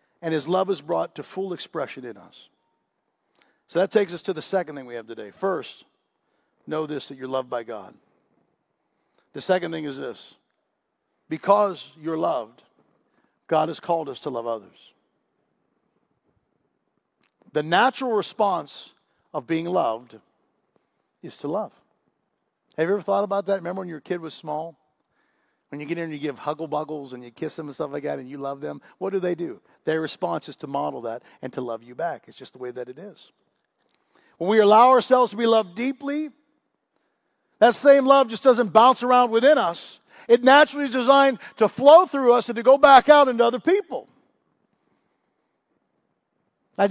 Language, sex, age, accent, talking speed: English, male, 50-69, American, 180 wpm